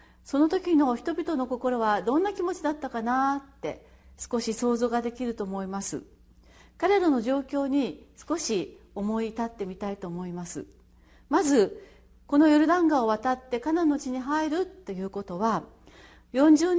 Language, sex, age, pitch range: Japanese, female, 40-59, 215-280 Hz